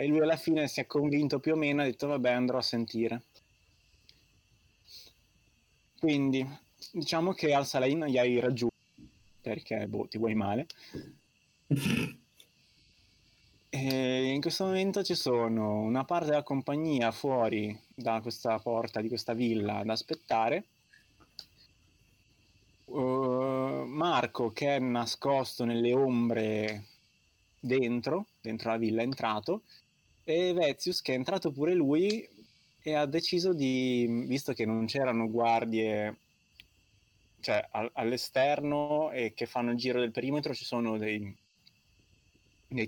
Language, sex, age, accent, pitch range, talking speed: Italian, male, 20-39, native, 110-135 Hz, 125 wpm